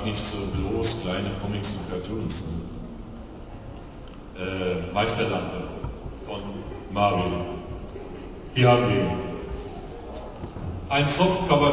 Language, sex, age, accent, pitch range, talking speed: German, male, 50-69, German, 95-130 Hz, 75 wpm